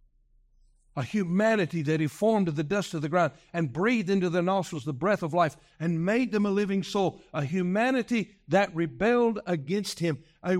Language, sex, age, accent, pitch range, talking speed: English, male, 60-79, American, 130-180 Hz, 185 wpm